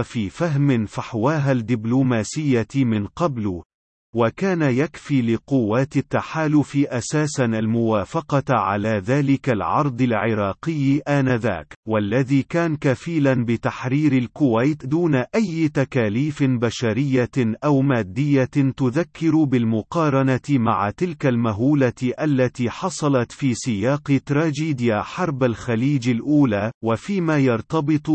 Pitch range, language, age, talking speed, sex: 120-145 Hz, Arabic, 40-59, 90 wpm, male